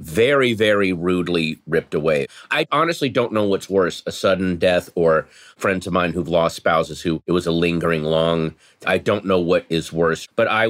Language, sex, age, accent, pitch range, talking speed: English, male, 30-49, American, 85-105 Hz, 195 wpm